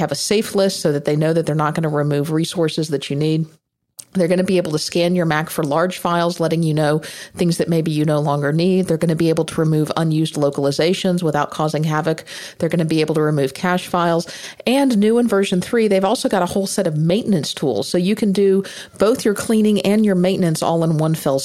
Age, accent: 50-69, American